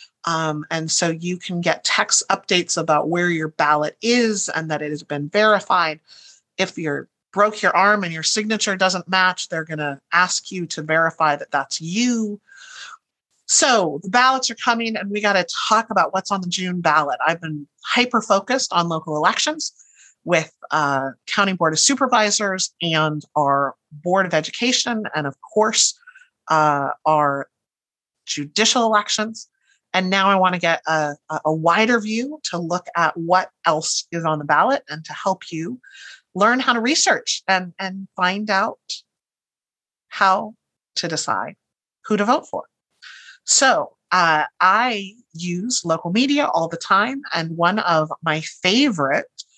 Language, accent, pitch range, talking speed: English, American, 160-215 Hz, 160 wpm